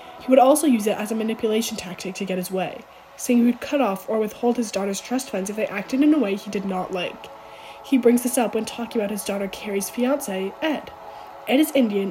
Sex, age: female, 10-29